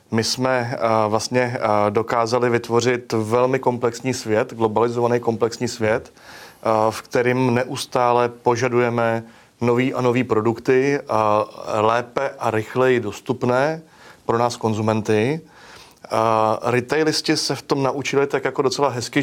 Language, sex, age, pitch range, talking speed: Czech, male, 30-49, 115-130 Hz, 110 wpm